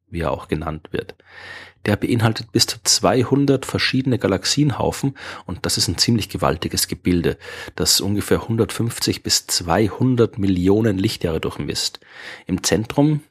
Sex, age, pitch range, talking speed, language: male, 30-49, 95-125 Hz, 130 wpm, German